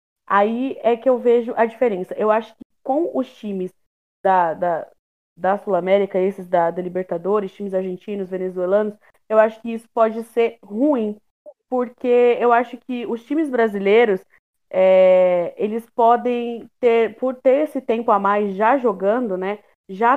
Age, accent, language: 20-39, Brazilian, Portuguese